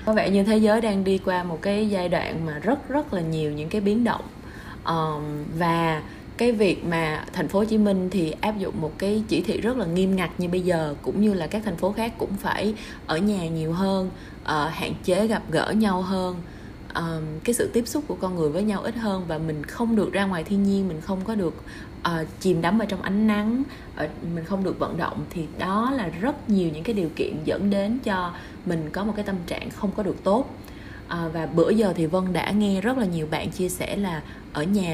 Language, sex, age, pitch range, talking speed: Vietnamese, female, 20-39, 165-210 Hz, 230 wpm